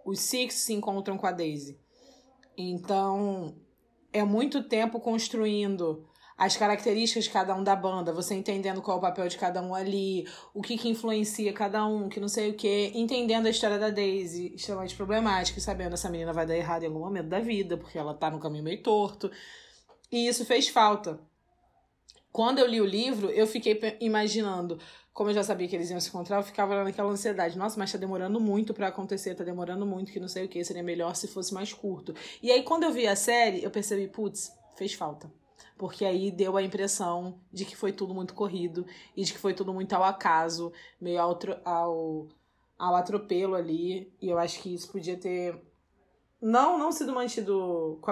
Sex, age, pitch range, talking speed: female, 20-39, 180-215 Hz, 205 wpm